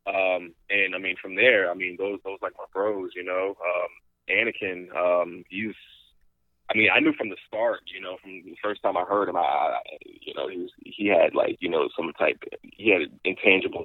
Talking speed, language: 220 wpm, English